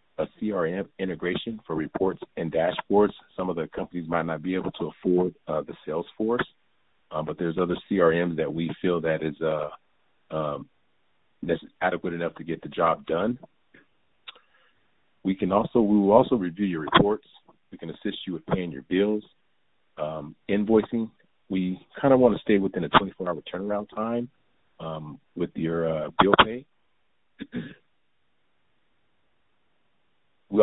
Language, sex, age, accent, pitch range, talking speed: English, male, 40-59, American, 80-105 Hz, 150 wpm